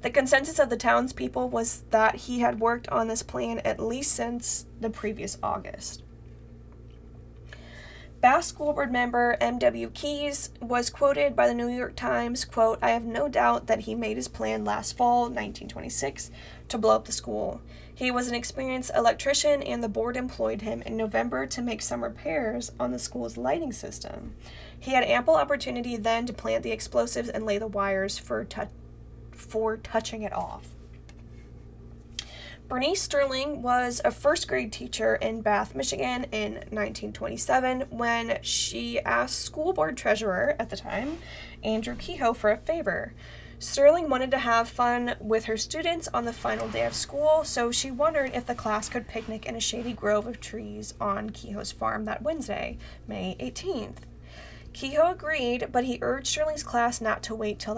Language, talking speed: English, 170 wpm